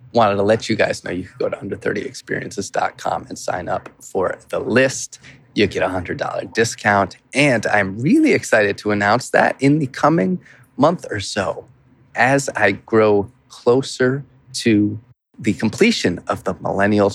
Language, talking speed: English, 160 wpm